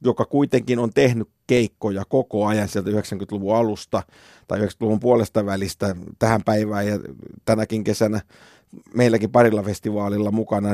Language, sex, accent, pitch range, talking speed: Finnish, male, native, 100-115 Hz, 130 wpm